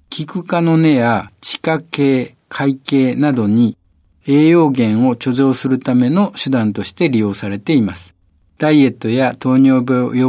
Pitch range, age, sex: 100-135 Hz, 60-79, male